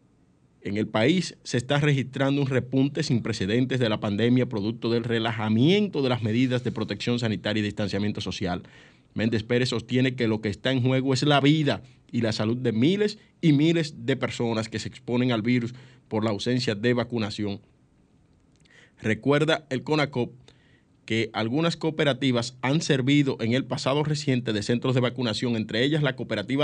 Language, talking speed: Spanish, 170 wpm